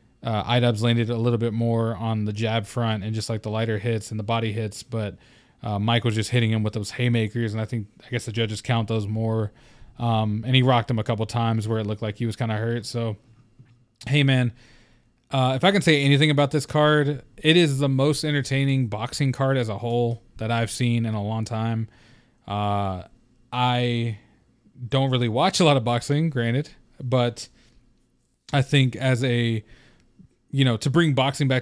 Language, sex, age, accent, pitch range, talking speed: English, male, 20-39, American, 115-130 Hz, 205 wpm